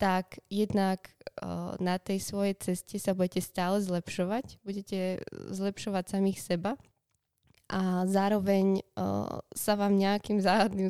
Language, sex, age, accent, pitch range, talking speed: Czech, female, 20-39, native, 175-195 Hz, 120 wpm